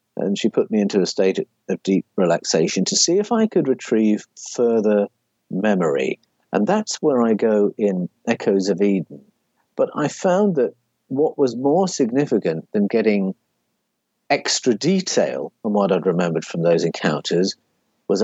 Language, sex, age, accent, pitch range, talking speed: English, male, 50-69, British, 110-145 Hz, 155 wpm